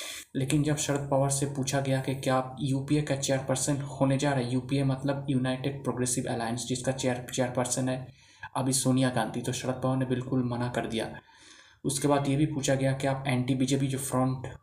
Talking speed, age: 205 wpm, 20-39